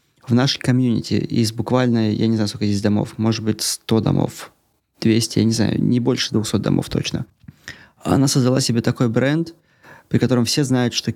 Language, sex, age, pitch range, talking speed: Russian, male, 20-39, 110-130 Hz, 185 wpm